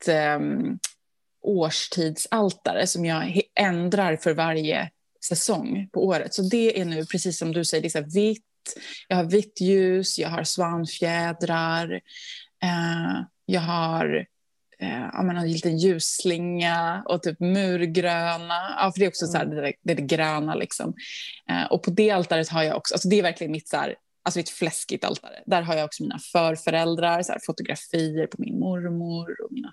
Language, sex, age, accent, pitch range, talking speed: Swedish, female, 20-39, native, 165-205 Hz, 170 wpm